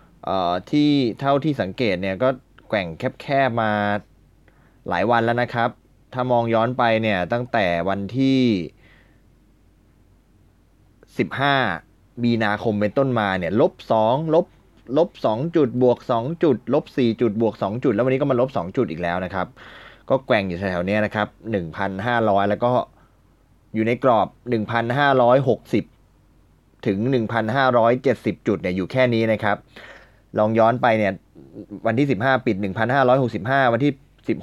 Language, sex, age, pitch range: Thai, male, 20-39, 100-125 Hz